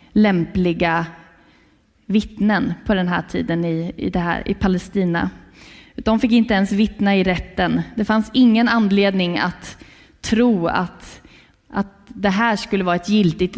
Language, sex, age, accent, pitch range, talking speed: Swedish, female, 20-39, native, 175-225 Hz, 145 wpm